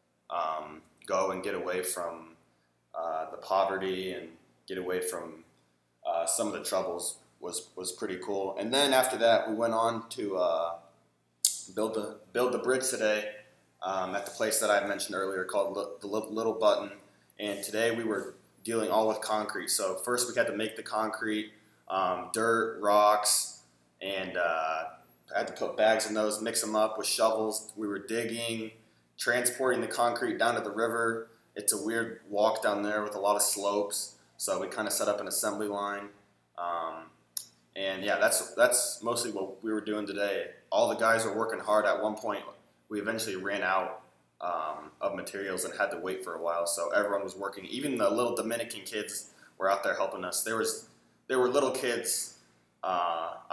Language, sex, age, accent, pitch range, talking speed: English, male, 20-39, American, 95-110 Hz, 190 wpm